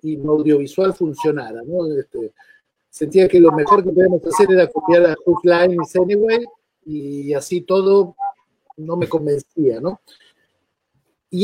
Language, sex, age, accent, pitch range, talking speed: Spanish, male, 50-69, Mexican, 155-205 Hz, 140 wpm